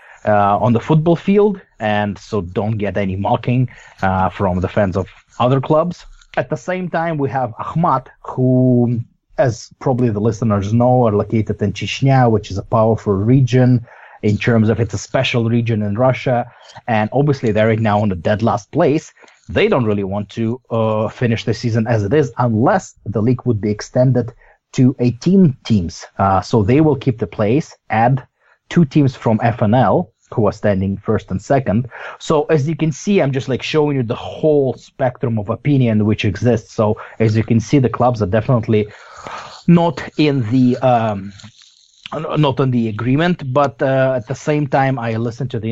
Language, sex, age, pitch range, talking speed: English, male, 30-49, 110-130 Hz, 185 wpm